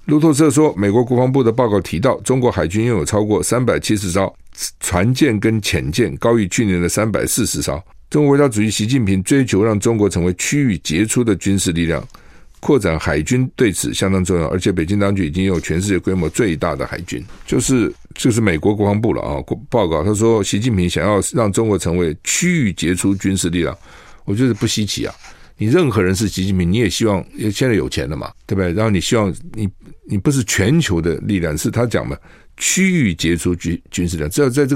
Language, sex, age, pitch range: Chinese, male, 50-69, 90-120 Hz